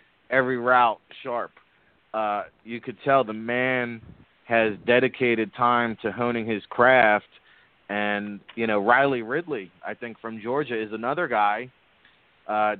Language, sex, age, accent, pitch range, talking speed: English, male, 30-49, American, 110-135 Hz, 135 wpm